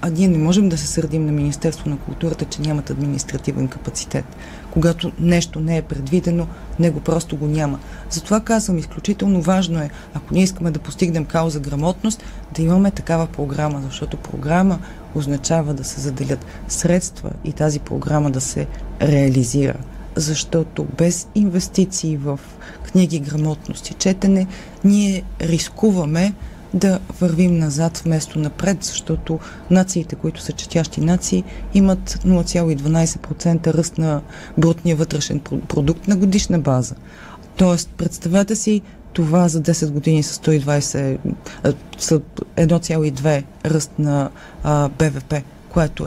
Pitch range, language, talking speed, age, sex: 150-175 Hz, Bulgarian, 130 wpm, 30-49, female